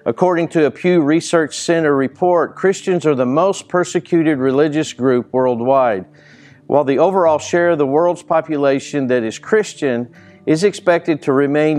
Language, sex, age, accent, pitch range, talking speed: English, male, 50-69, American, 130-165 Hz, 155 wpm